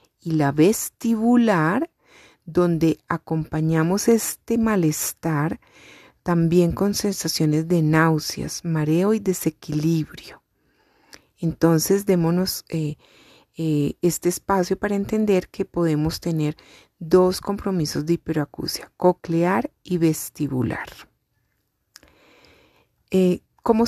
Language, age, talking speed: Spanish, 30-49, 90 wpm